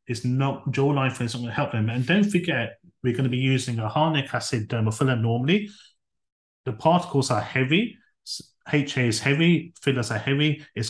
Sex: male